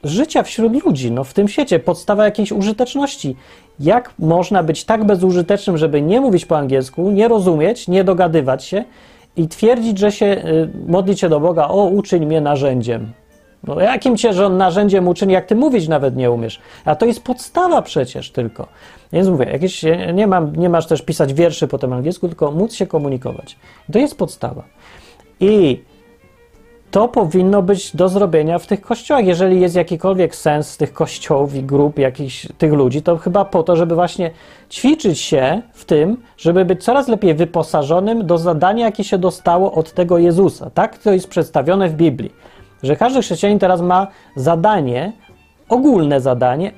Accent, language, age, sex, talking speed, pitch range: native, Polish, 30-49, male, 170 wpm, 160-205 Hz